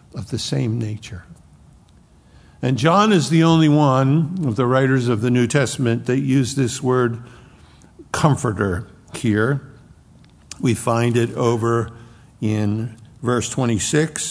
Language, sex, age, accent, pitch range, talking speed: English, male, 60-79, American, 120-150 Hz, 125 wpm